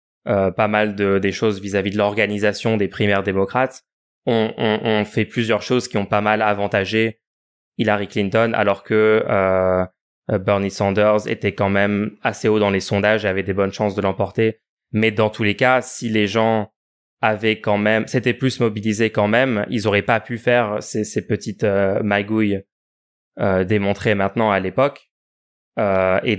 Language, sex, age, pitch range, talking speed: French, male, 20-39, 100-115 Hz, 175 wpm